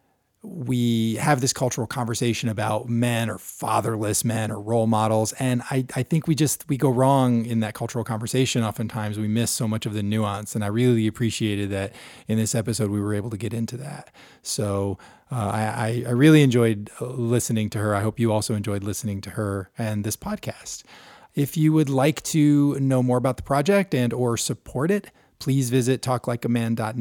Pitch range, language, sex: 110-135 Hz, English, male